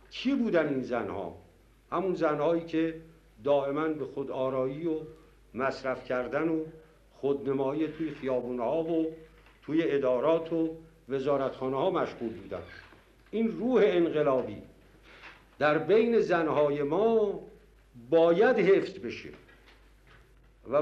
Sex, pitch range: male, 145-190 Hz